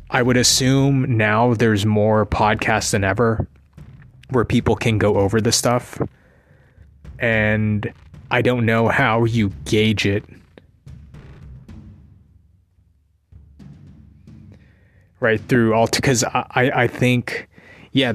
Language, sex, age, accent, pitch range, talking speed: English, male, 20-39, American, 100-120 Hz, 105 wpm